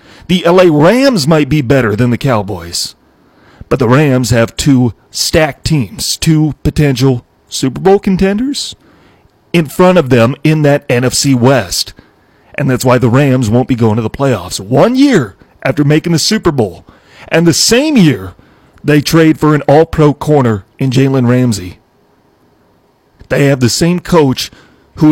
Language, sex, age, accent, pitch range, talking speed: English, male, 40-59, American, 125-150 Hz, 160 wpm